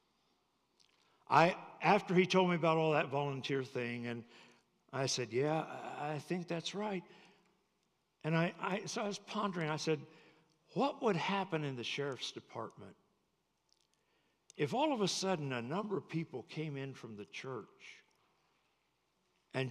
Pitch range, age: 135-175 Hz, 60-79